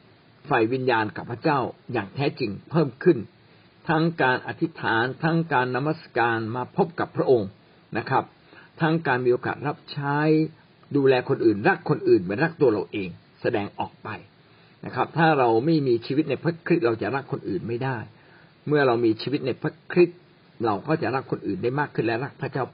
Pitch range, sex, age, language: 120-160 Hz, male, 60-79, Thai